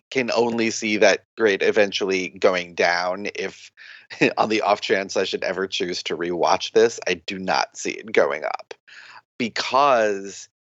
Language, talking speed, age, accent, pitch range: English, 155 wpm, 30-49, American, 100-150 Hz